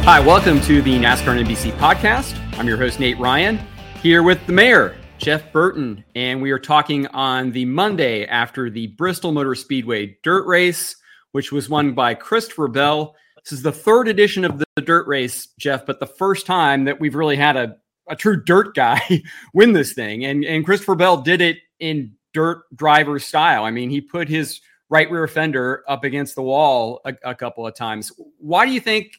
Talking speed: 195 wpm